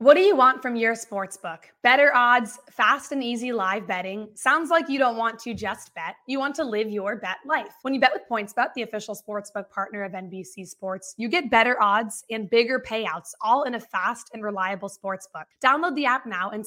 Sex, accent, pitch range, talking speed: female, American, 200-245 Hz, 215 wpm